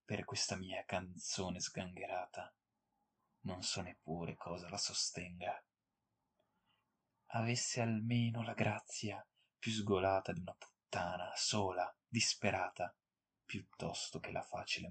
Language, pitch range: Italian, 90-110 Hz